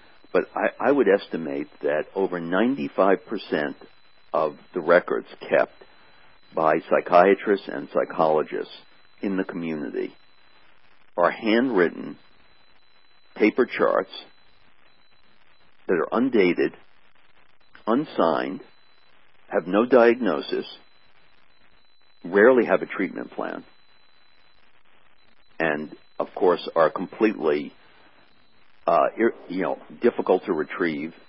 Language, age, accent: English, 60-79, American